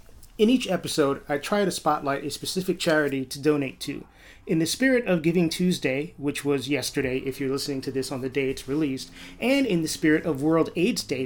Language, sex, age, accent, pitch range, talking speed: English, male, 30-49, American, 135-165 Hz, 215 wpm